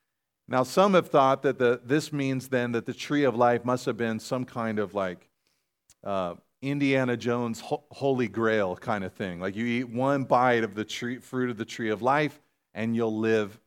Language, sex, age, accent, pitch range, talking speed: English, male, 40-59, American, 100-130 Hz, 205 wpm